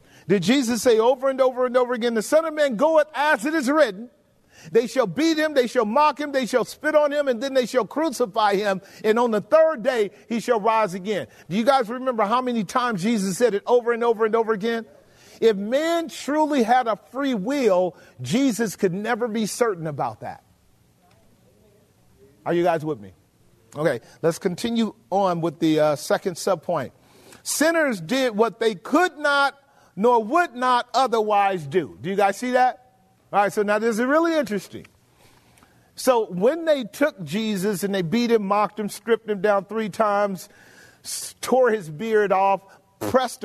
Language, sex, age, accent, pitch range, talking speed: English, male, 40-59, American, 195-255 Hz, 190 wpm